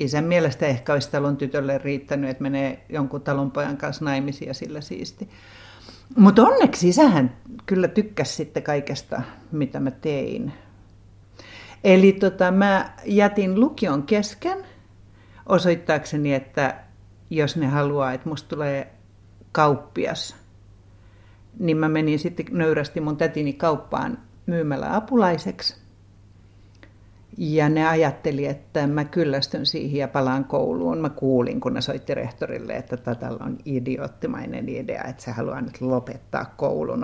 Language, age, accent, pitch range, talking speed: Finnish, 60-79, native, 125-165 Hz, 125 wpm